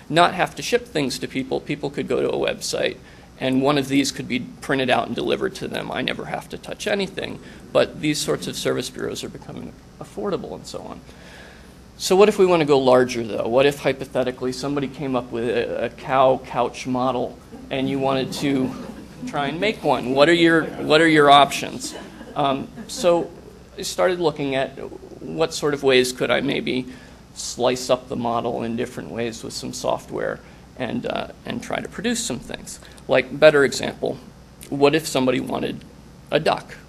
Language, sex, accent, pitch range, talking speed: English, male, American, 125-155 Hz, 190 wpm